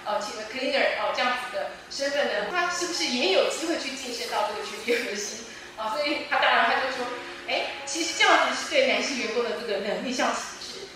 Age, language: 20-39, Chinese